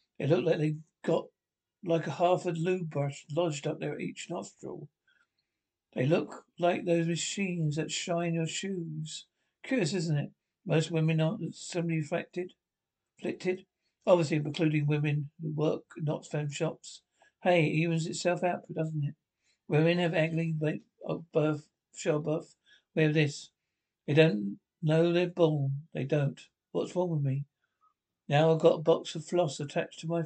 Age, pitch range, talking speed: 60-79, 155-180 Hz, 160 wpm